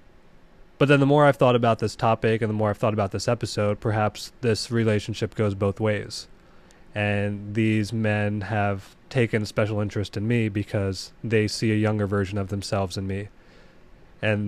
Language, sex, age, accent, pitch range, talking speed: English, male, 20-39, American, 100-115 Hz, 180 wpm